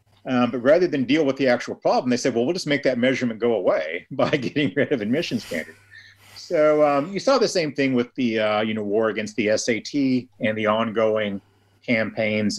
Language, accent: English, American